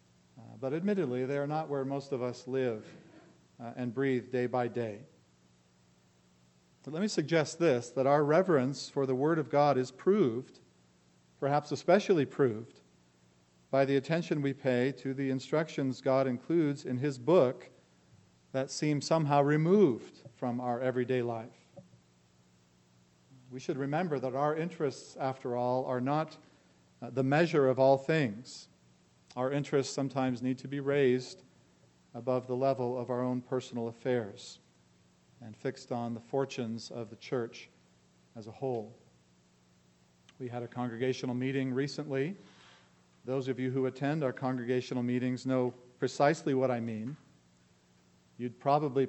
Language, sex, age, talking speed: English, male, 40-59, 140 wpm